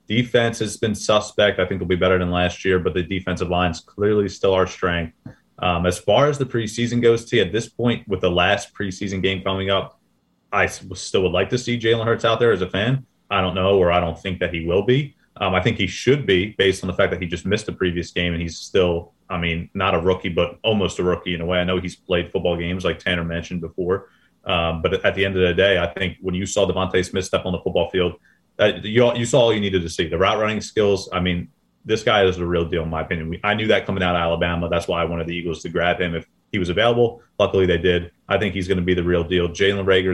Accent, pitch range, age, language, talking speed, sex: American, 85-100 Hz, 30-49, English, 275 wpm, male